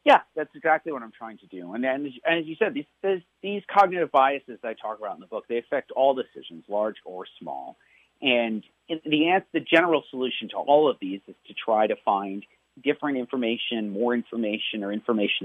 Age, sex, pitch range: 40-59, male, 110-150 Hz